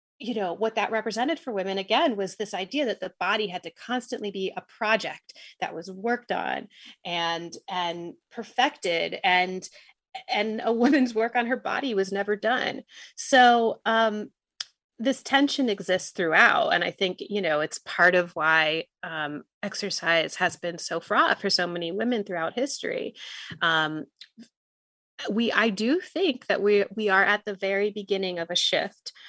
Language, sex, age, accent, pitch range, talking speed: English, female, 30-49, American, 175-225 Hz, 165 wpm